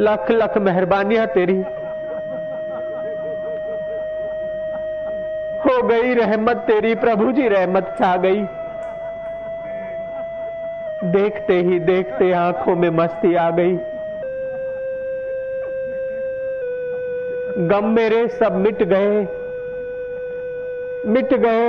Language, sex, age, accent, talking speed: Hindi, male, 50-69, native, 75 wpm